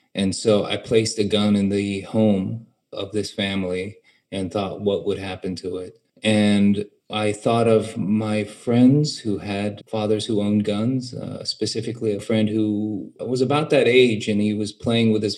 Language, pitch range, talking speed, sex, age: English, 105-115 Hz, 180 wpm, male, 30-49